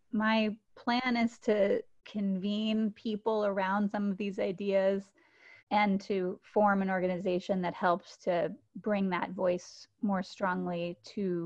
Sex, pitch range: female, 165-205 Hz